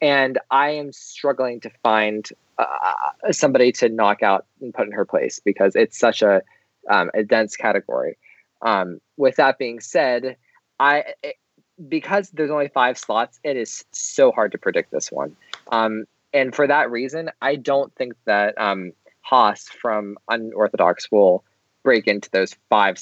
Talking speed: 160 wpm